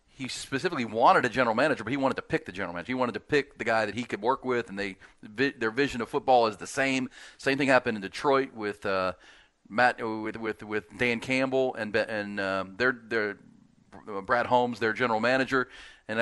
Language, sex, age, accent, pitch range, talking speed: English, male, 40-59, American, 105-130 Hz, 220 wpm